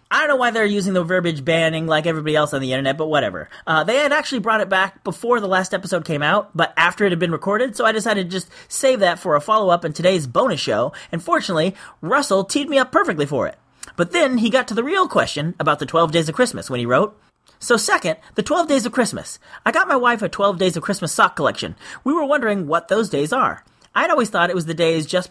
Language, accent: English, American